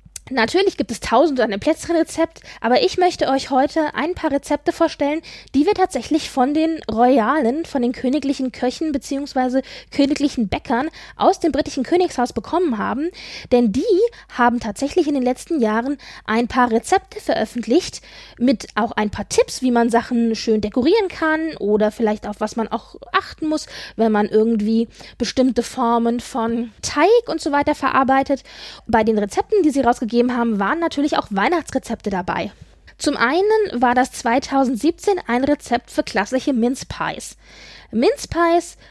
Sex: female